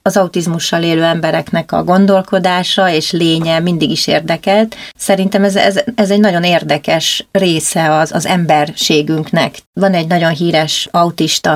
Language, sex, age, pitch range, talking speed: Hungarian, female, 30-49, 165-195 Hz, 135 wpm